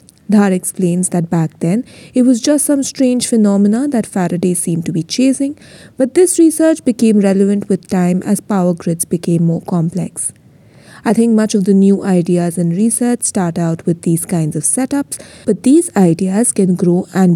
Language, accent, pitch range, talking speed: English, Indian, 170-225 Hz, 180 wpm